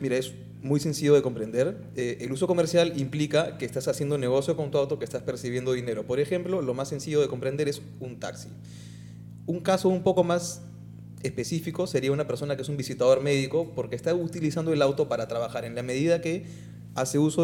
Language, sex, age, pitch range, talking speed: Spanish, male, 30-49, 120-160 Hz, 205 wpm